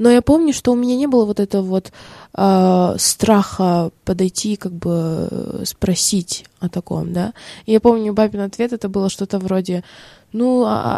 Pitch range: 180-220 Hz